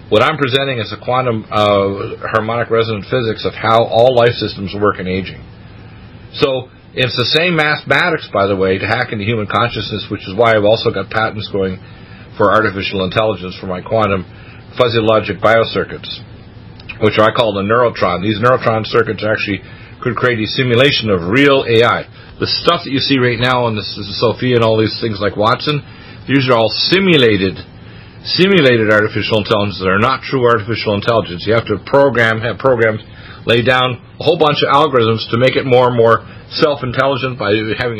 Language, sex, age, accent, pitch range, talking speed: English, male, 50-69, American, 105-125 Hz, 180 wpm